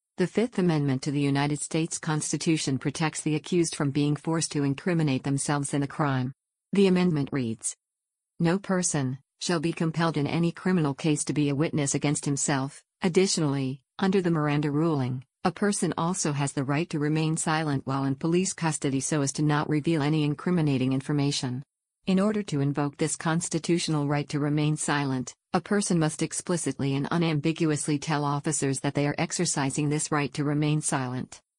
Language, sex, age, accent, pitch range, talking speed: English, female, 50-69, American, 145-165 Hz, 175 wpm